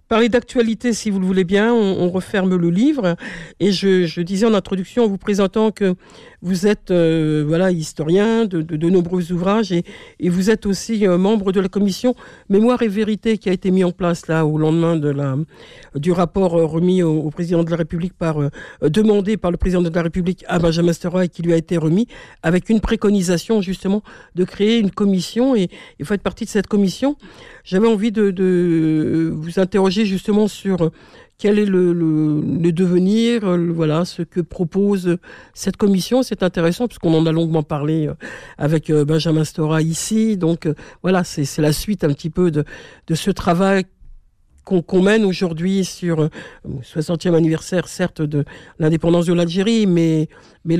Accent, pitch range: French, 165-205 Hz